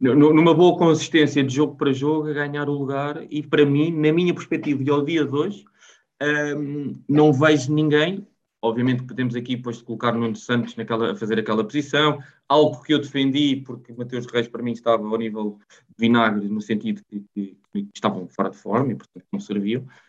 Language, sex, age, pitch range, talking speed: Portuguese, male, 20-39, 115-145 Hz, 195 wpm